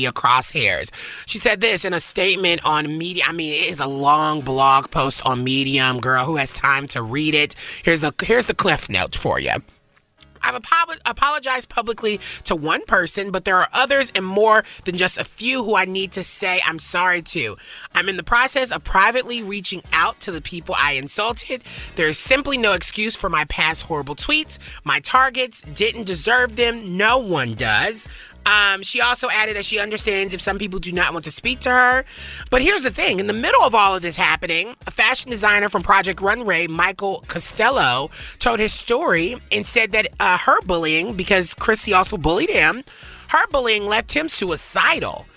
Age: 30-49